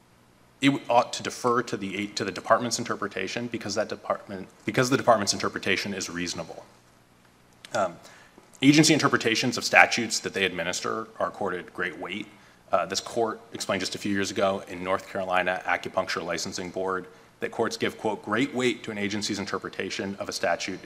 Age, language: 30-49, English